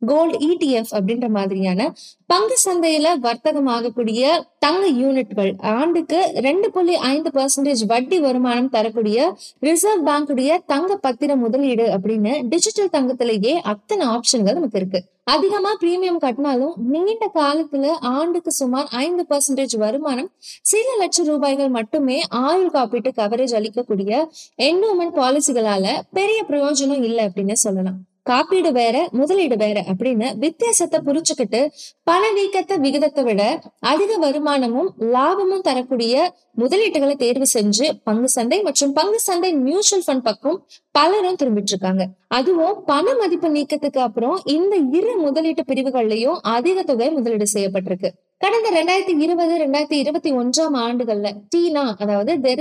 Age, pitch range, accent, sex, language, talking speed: 20-39, 235-335 Hz, native, female, Tamil, 105 wpm